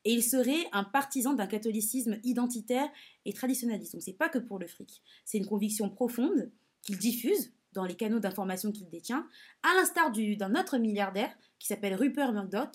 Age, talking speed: 20-39, 185 wpm